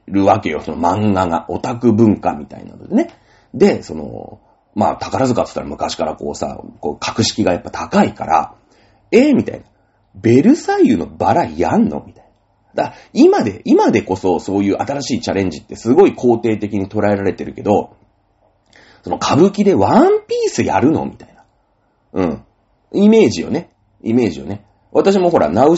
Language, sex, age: Japanese, male, 40-59